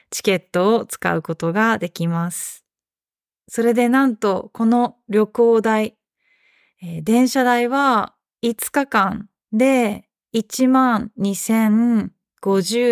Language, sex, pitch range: Japanese, female, 195-250 Hz